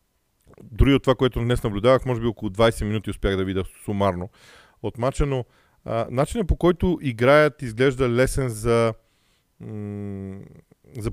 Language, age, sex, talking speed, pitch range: Bulgarian, 40-59, male, 135 wpm, 110-150 Hz